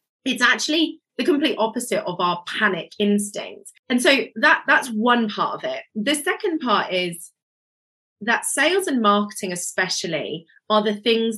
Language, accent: English, British